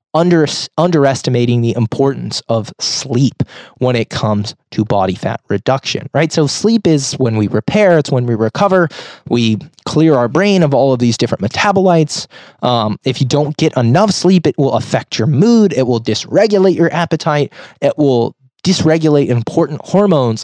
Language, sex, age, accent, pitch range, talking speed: English, male, 20-39, American, 125-170 Hz, 160 wpm